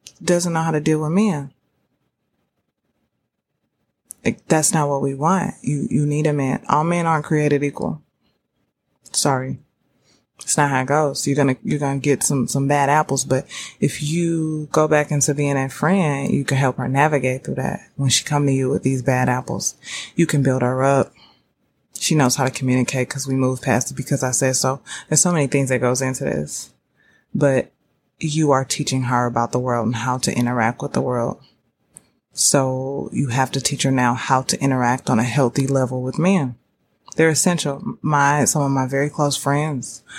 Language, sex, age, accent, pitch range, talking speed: English, female, 20-39, American, 130-150 Hz, 195 wpm